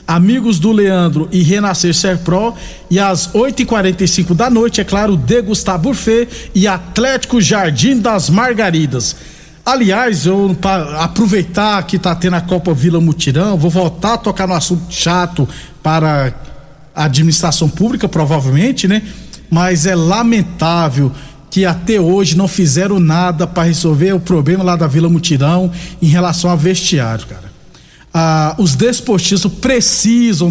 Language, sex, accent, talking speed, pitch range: Portuguese, male, Brazilian, 140 wpm, 165-210 Hz